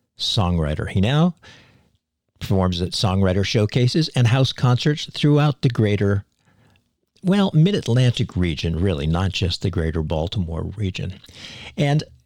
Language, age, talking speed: English, 50-69, 115 wpm